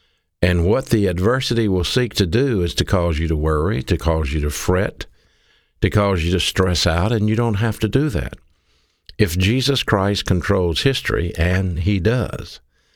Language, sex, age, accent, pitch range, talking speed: English, male, 60-79, American, 85-105 Hz, 185 wpm